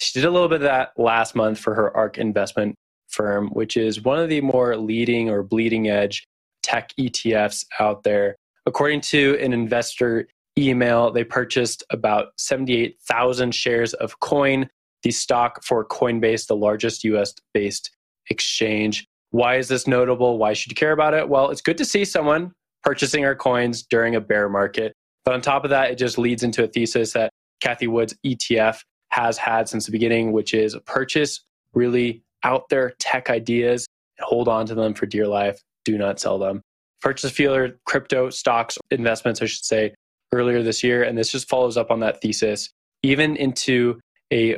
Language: English